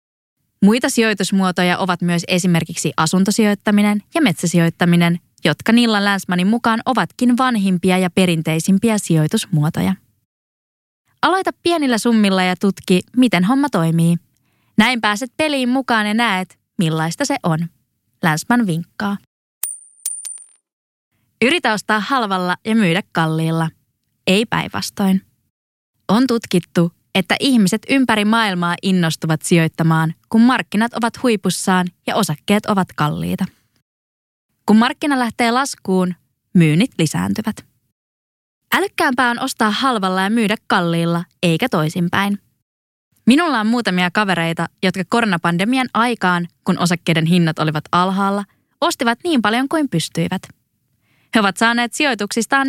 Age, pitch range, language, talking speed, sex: 20-39, 170-230 Hz, Finnish, 110 wpm, female